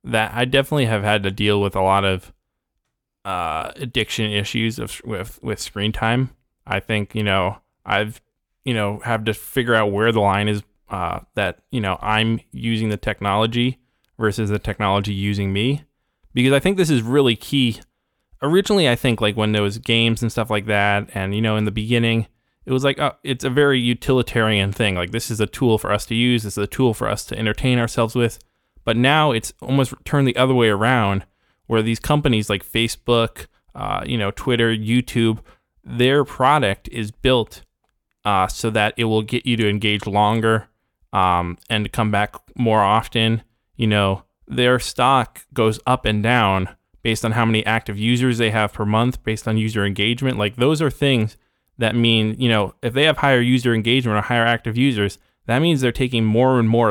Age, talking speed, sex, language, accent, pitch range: 20-39, 195 wpm, male, English, American, 105-125 Hz